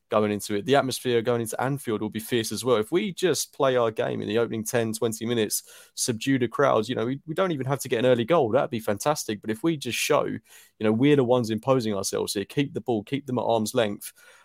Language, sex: English, male